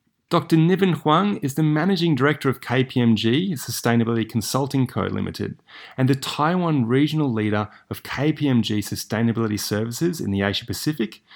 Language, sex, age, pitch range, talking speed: English, male, 30-49, 105-145 Hz, 130 wpm